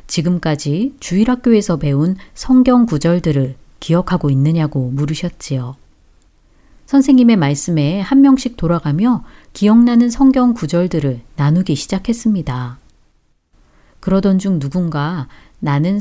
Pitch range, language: 145-210 Hz, Korean